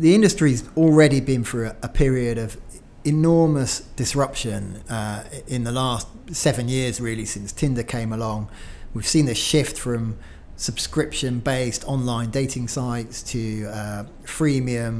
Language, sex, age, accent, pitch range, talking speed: English, male, 30-49, British, 115-145 Hz, 135 wpm